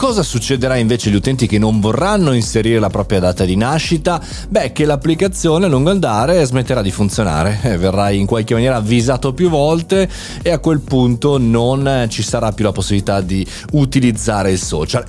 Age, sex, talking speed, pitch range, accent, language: 30-49, male, 175 wpm, 105-150 Hz, native, Italian